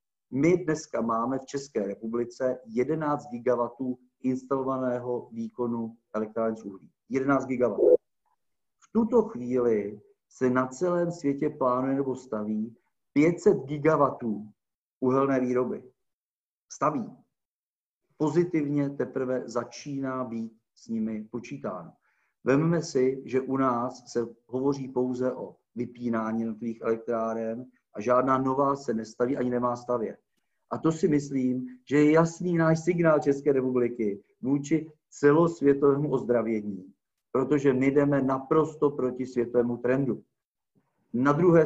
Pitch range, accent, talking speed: 120-145 Hz, native, 115 wpm